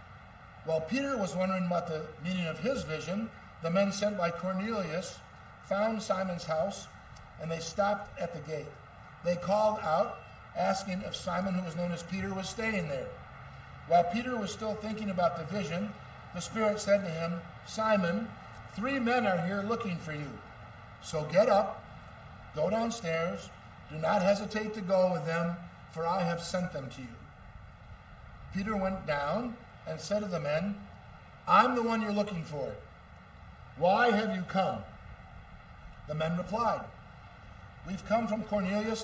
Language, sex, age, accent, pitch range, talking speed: English, male, 50-69, American, 145-205 Hz, 160 wpm